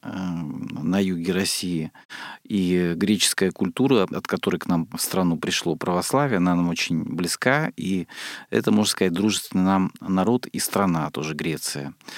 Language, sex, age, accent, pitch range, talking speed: Russian, male, 40-59, native, 90-120 Hz, 145 wpm